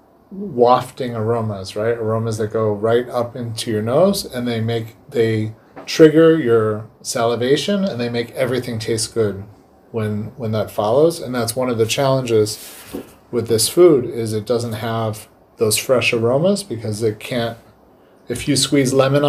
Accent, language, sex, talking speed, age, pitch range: American, Hebrew, male, 160 wpm, 30-49, 115-135 Hz